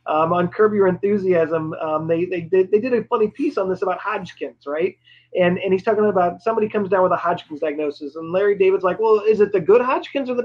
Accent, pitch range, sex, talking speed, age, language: American, 170-215 Hz, male, 240 wpm, 30-49, English